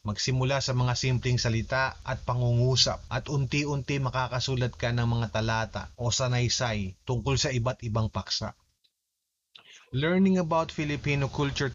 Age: 20-39